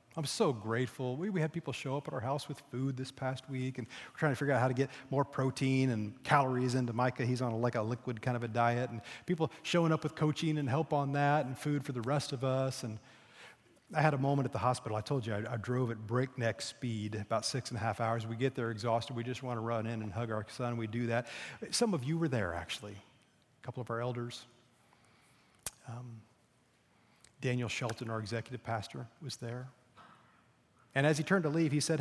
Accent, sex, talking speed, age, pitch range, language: American, male, 235 wpm, 30-49, 115-145 Hz, English